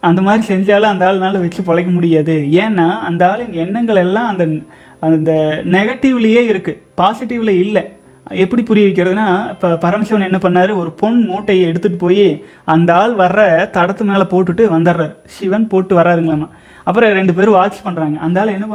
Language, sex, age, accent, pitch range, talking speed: Tamil, male, 30-49, native, 180-225 Hz, 155 wpm